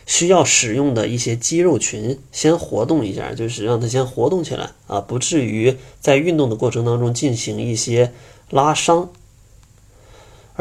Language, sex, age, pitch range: Chinese, male, 20-39, 110-140 Hz